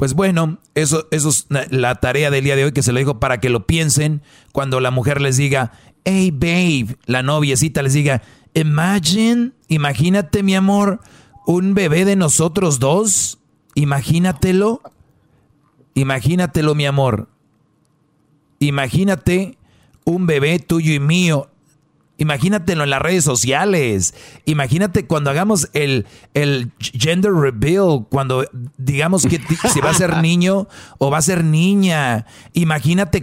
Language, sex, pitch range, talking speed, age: Spanish, male, 130-165 Hz, 135 wpm, 40-59